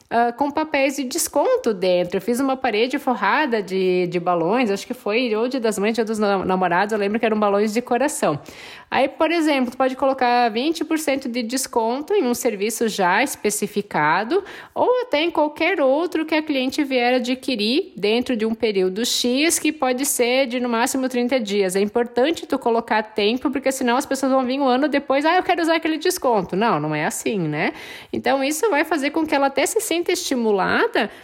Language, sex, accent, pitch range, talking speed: Portuguese, female, Brazilian, 215-305 Hz, 200 wpm